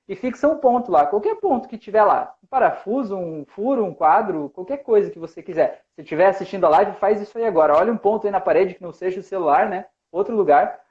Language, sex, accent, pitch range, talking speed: Portuguese, male, Brazilian, 185-240 Hz, 250 wpm